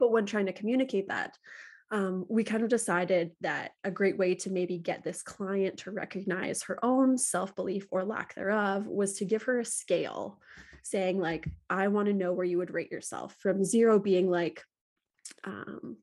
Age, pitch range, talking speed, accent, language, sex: 20-39, 180-205 Hz, 185 wpm, American, English, female